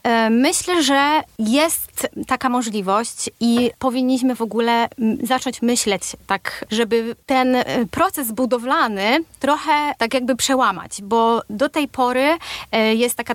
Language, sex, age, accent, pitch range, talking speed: Polish, female, 30-49, native, 210-260 Hz, 115 wpm